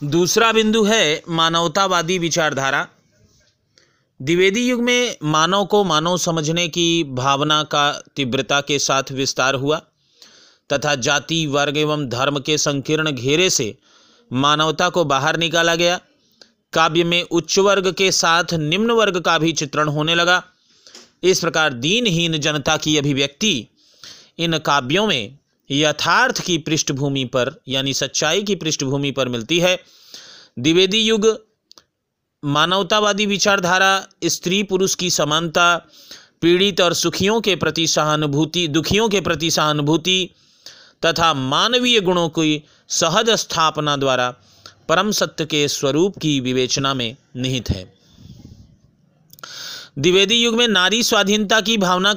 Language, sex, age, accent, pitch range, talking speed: Hindi, male, 40-59, native, 145-185 Hz, 125 wpm